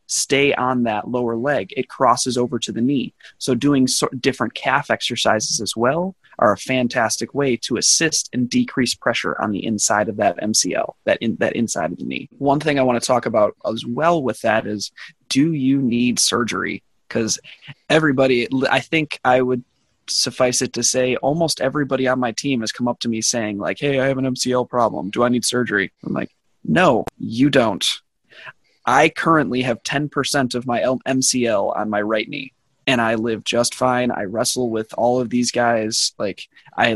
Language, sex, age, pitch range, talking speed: English, male, 20-39, 115-135 Hz, 190 wpm